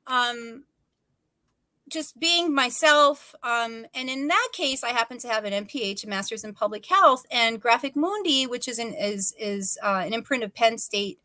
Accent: American